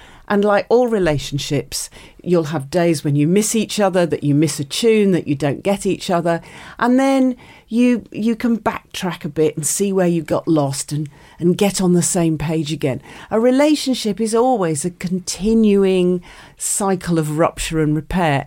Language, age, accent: English, 40-59, British